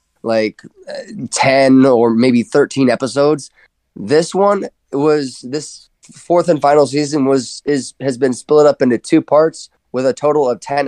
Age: 20-39